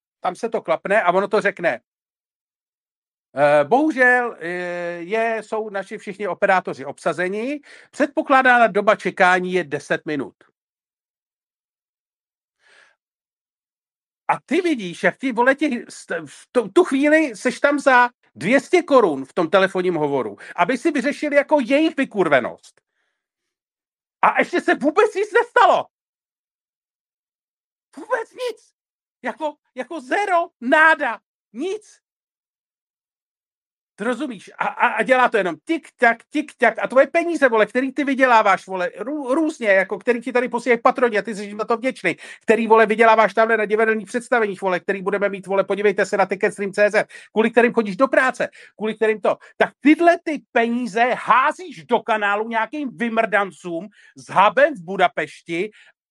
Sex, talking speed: male, 140 wpm